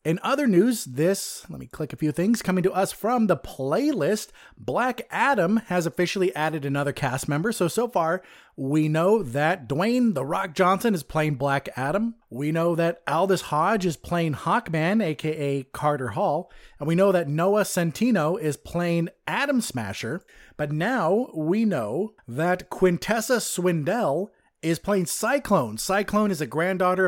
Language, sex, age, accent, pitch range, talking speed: English, male, 30-49, American, 155-200 Hz, 160 wpm